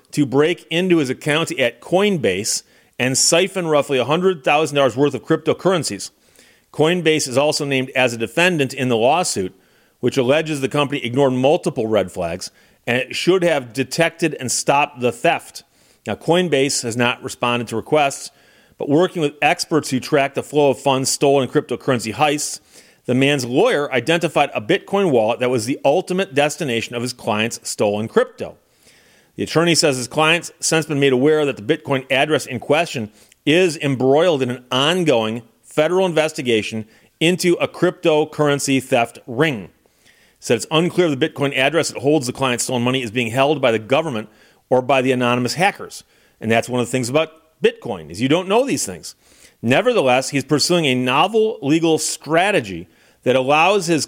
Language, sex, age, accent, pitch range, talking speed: English, male, 40-59, American, 125-160 Hz, 170 wpm